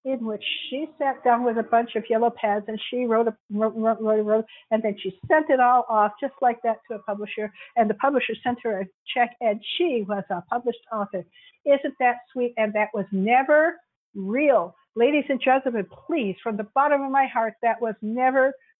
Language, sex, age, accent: English, female, 60-79, American